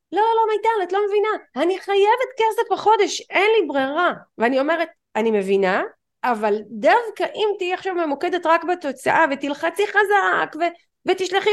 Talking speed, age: 150 wpm, 30-49